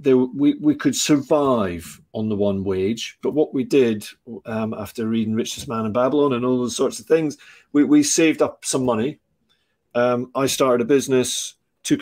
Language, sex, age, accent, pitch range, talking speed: English, male, 40-59, British, 110-135 Hz, 190 wpm